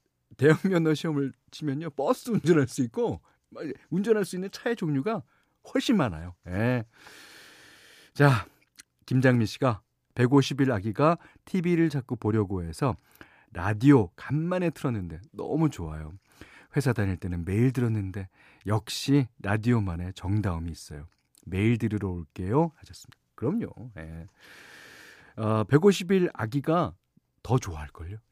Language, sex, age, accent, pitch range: Korean, male, 40-59, native, 100-155 Hz